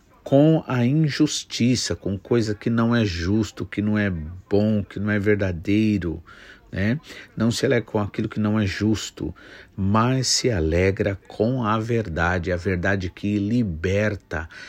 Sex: male